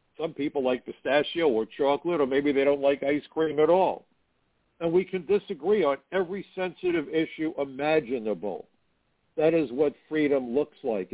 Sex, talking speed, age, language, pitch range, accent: male, 160 wpm, 60-79, English, 135-175 Hz, American